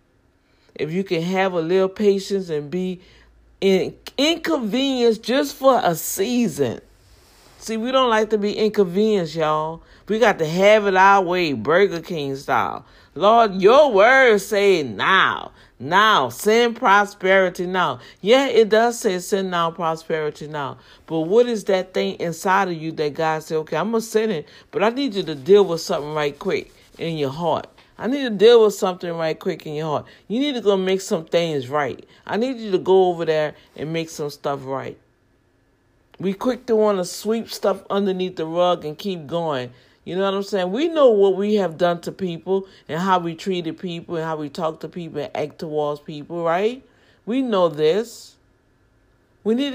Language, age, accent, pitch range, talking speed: English, 60-79, American, 160-215 Hz, 190 wpm